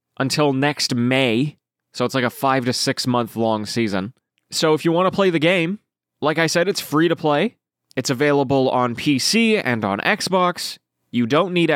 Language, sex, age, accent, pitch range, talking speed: English, male, 20-39, American, 130-170 Hz, 195 wpm